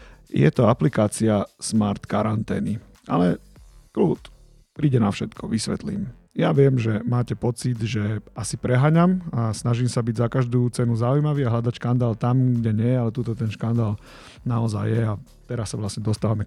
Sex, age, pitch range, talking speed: male, 40-59, 115-135 Hz, 160 wpm